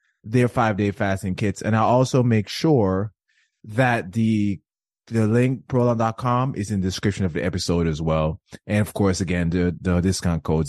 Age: 20-39